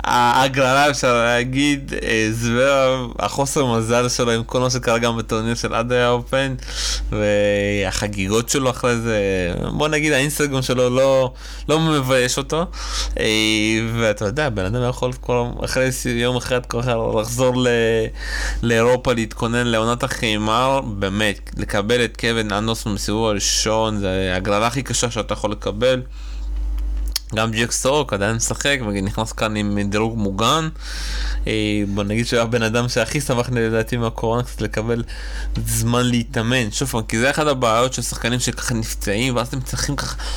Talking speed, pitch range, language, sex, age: 145 wpm, 105-130 Hz, Hebrew, male, 20-39